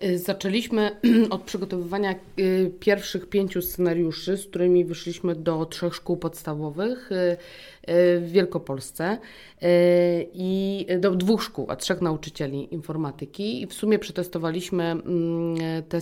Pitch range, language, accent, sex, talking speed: 165-205 Hz, Polish, native, female, 105 wpm